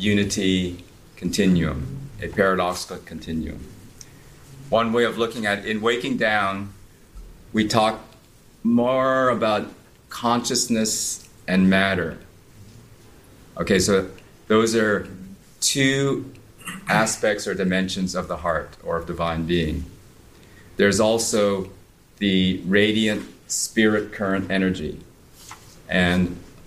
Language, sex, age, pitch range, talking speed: English, male, 40-59, 85-105 Hz, 100 wpm